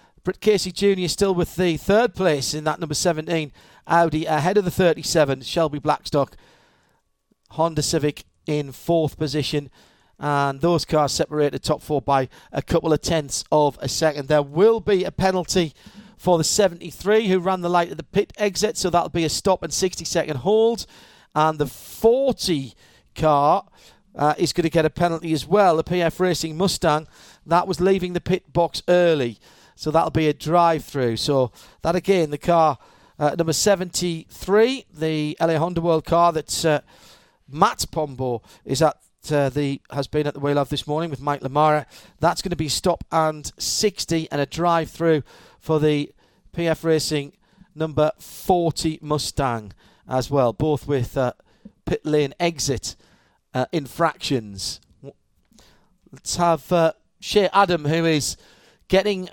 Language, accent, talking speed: English, British, 160 wpm